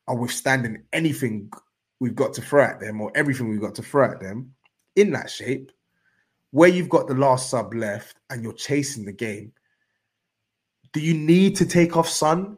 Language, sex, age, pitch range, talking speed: English, male, 20-39, 115-155 Hz, 185 wpm